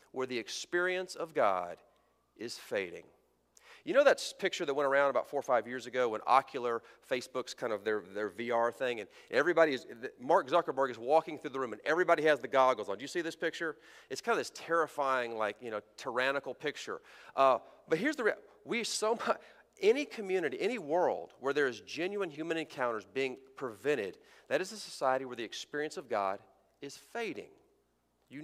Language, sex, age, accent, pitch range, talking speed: English, male, 40-59, American, 130-200 Hz, 195 wpm